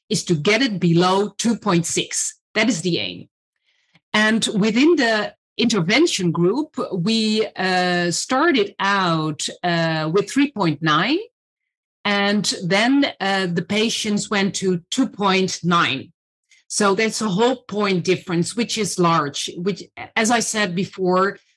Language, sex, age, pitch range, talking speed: English, female, 40-59, 190-250 Hz, 120 wpm